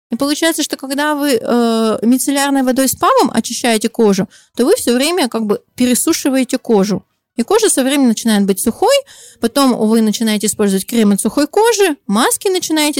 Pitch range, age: 225-285 Hz, 20-39